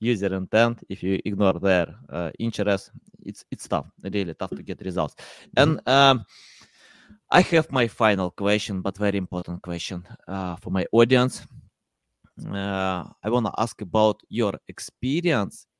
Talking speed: 150 wpm